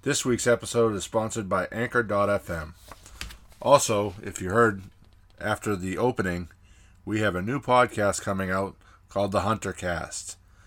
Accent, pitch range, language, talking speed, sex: American, 90-115 Hz, English, 140 wpm, male